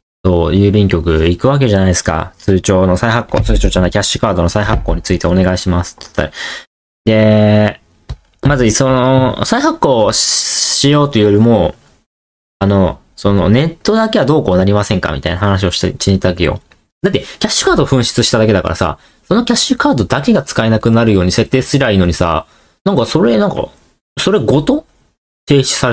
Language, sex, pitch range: Japanese, male, 90-130 Hz